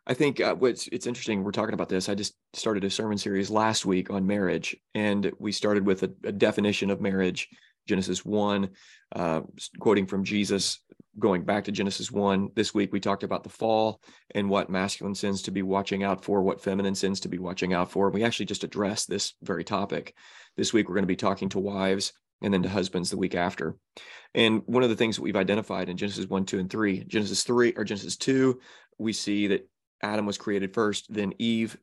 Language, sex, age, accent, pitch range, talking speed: English, male, 30-49, American, 95-110 Hz, 215 wpm